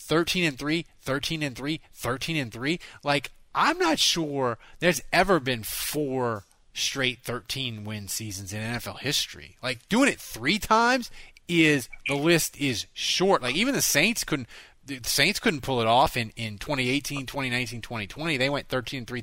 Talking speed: 125 wpm